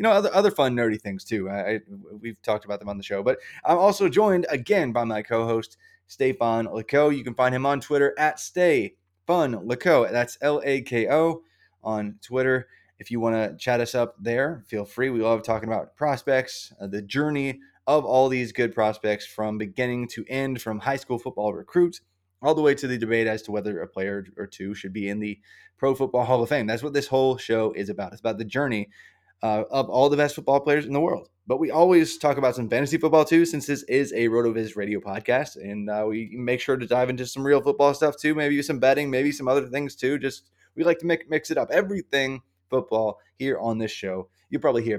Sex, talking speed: male, 230 wpm